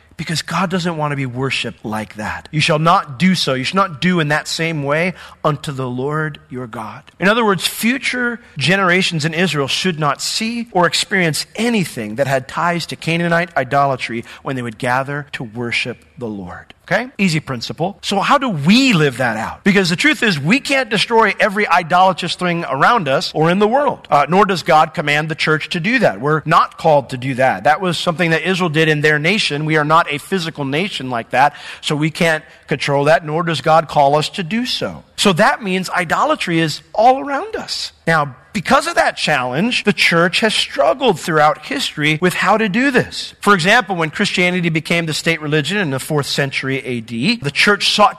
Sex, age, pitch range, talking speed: male, 40-59, 145-195 Hz, 205 wpm